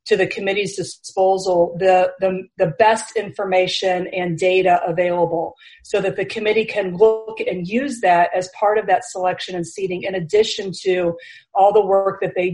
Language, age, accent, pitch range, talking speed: English, 40-59, American, 180-200 Hz, 170 wpm